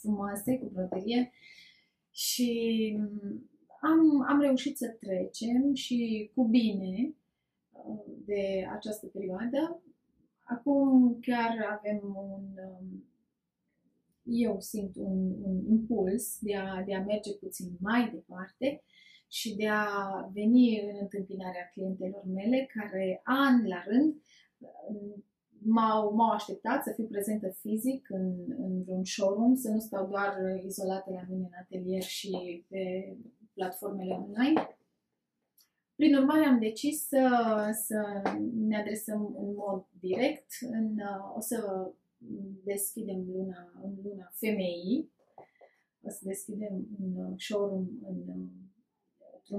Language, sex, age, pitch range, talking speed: Romanian, female, 20-39, 190-240 Hz, 110 wpm